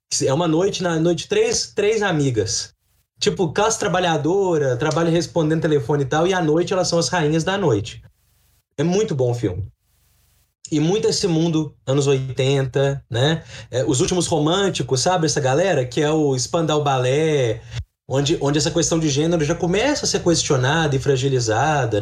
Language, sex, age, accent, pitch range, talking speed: Portuguese, male, 20-39, Brazilian, 130-175 Hz, 170 wpm